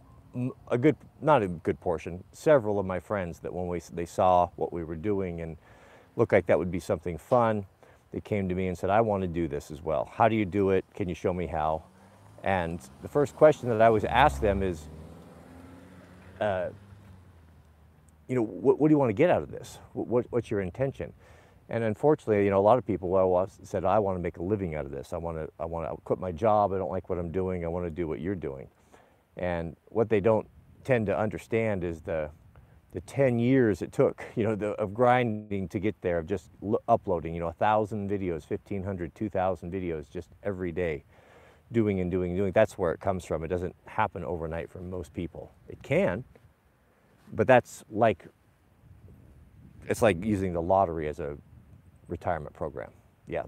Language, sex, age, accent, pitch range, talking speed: English, male, 50-69, American, 85-105 Hz, 210 wpm